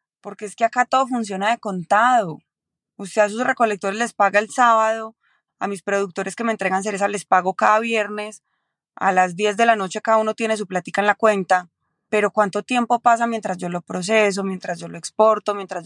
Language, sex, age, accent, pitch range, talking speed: Spanish, female, 20-39, Colombian, 195-240 Hz, 205 wpm